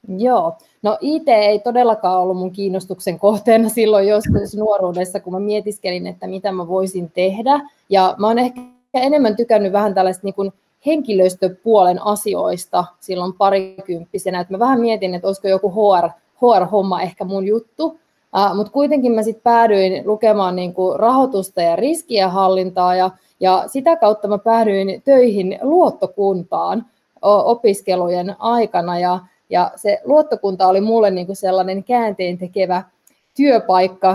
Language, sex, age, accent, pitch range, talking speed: Finnish, female, 20-39, native, 185-225 Hz, 135 wpm